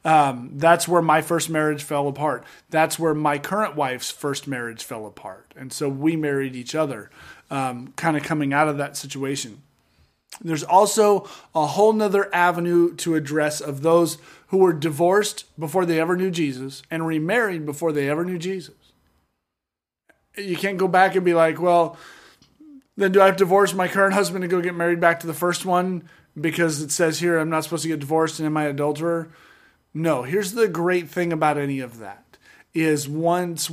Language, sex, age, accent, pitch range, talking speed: English, male, 30-49, American, 145-175 Hz, 190 wpm